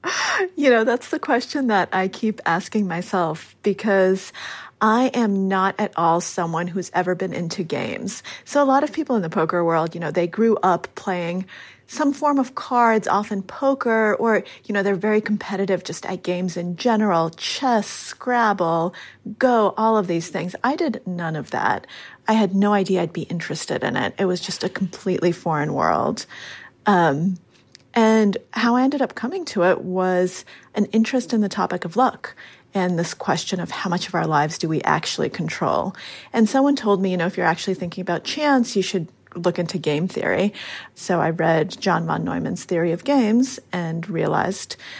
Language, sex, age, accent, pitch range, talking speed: English, female, 30-49, American, 175-225 Hz, 190 wpm